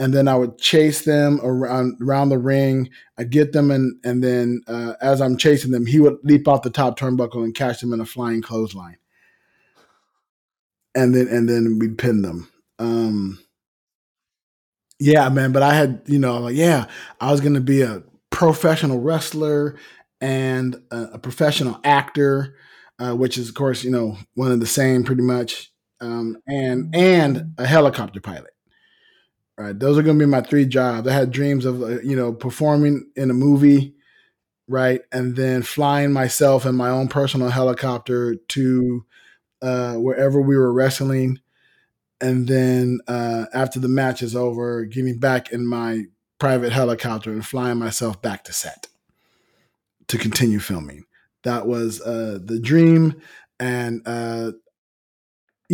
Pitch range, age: 120-140 Hz, 20-39